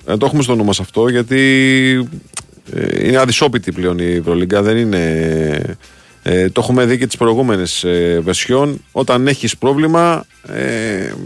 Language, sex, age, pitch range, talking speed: Greek, male, 40-59, 110-140 Hz, 135 wpm